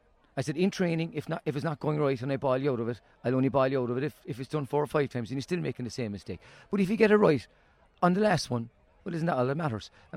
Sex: male